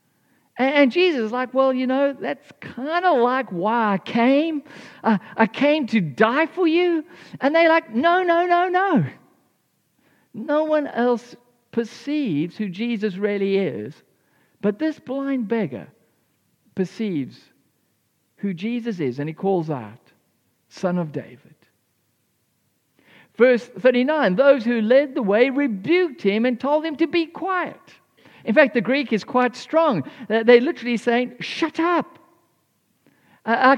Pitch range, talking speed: 210-310 Hz, 140 wpm